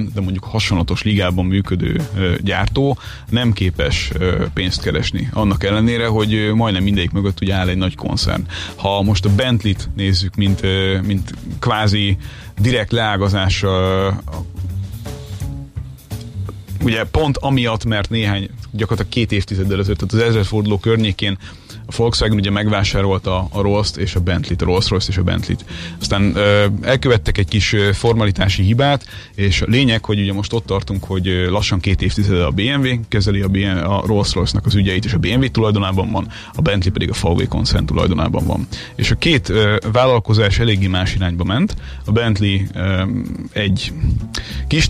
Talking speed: 145 wpm